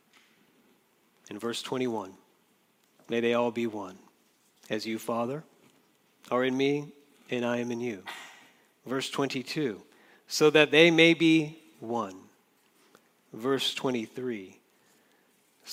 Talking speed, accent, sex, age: 110 wpm, American, male, 40-59